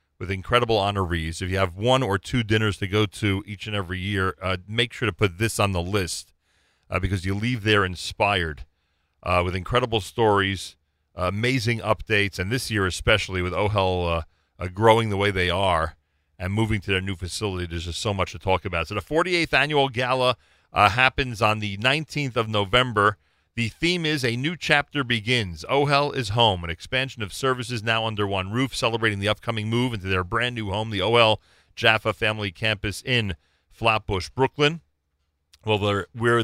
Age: 40-59